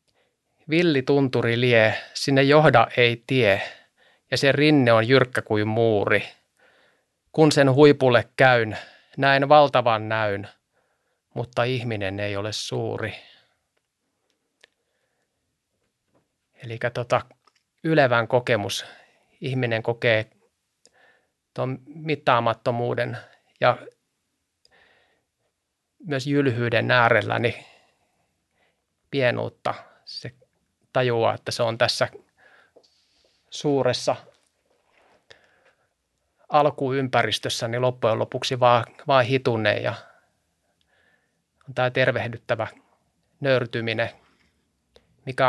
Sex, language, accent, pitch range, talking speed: male, Finnish, native, 115-130 Hz, 75 wpm